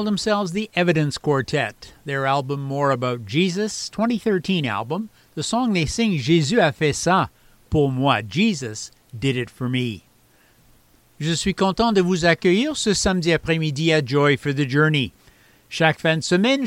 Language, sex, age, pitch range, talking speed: English, male, 60-79, 140-195 Hz, 160 wpm